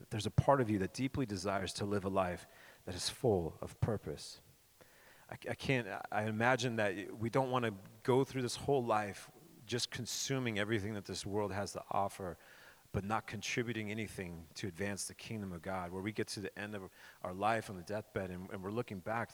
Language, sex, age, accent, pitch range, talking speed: English, male, 40-59, American, 95-120 Hz, 210 wpm